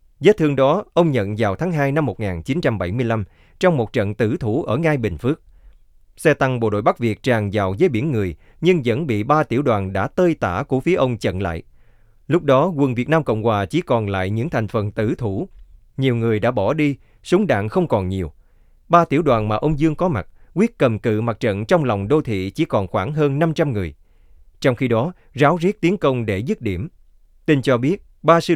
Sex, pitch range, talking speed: male, 100-145 Hz, 225 wpm